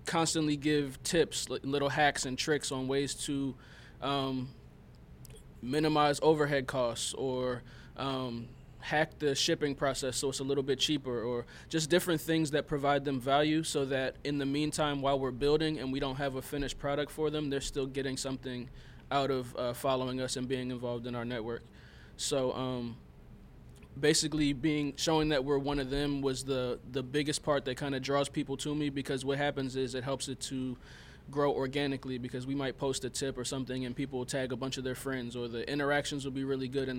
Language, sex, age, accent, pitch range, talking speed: English, male, 20-39, American, 130-145 Hz, 200 wpm